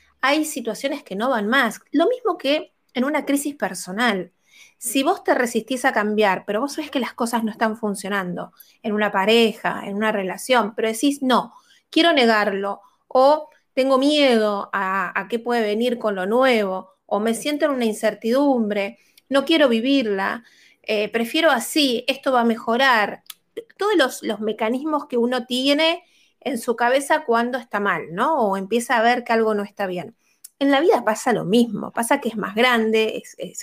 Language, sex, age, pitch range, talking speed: Spanish, female, 20-39, 210-265 Hz, 180 wpm